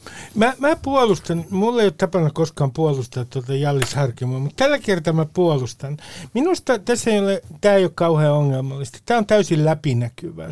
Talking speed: 170 wpm